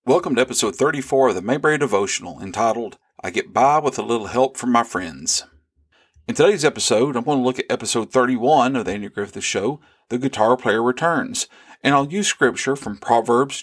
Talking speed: 195 wpm